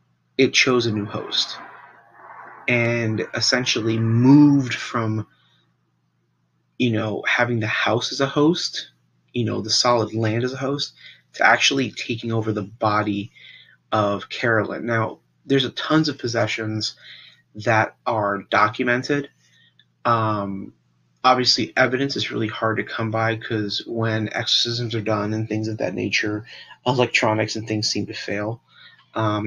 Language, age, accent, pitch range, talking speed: English, 30-49, American, 100-120 Hz, 140 wpm